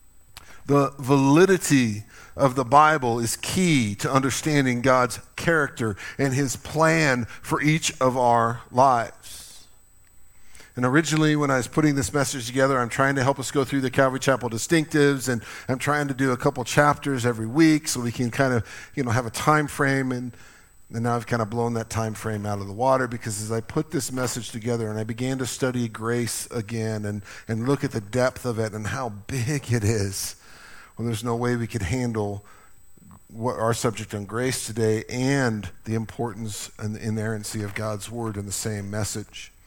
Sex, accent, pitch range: male, American, 105-130 Hz